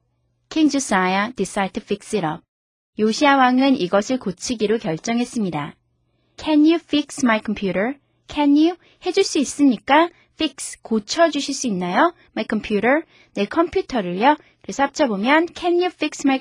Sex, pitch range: female, 205-300 Hz